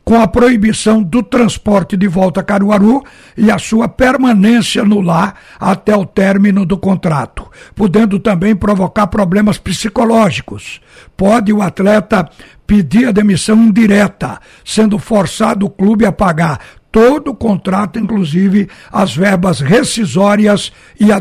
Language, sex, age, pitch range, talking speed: Portuguese, male, 60-79, 180-215 Hz, 135 wpm